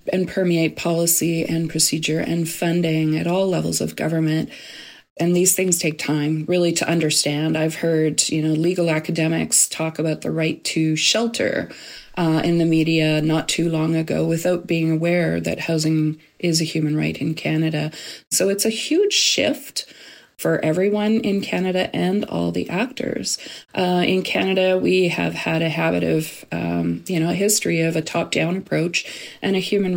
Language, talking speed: English, 170 wpm